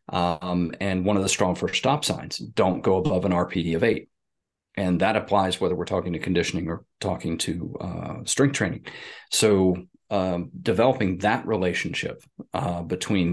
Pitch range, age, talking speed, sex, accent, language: 90-110 Hz, 30-49, 165 wpm, male, American, English